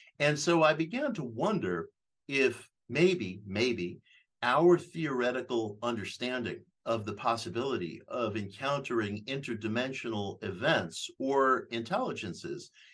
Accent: American